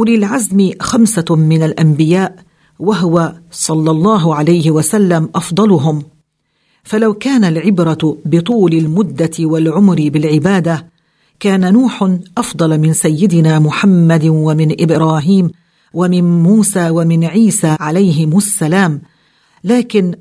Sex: female